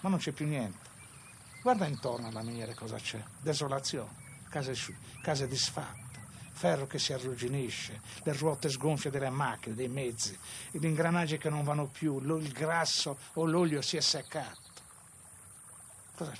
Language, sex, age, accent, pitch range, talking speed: Italian, male, 60-79, native, 115-155 Hz, 145 wpm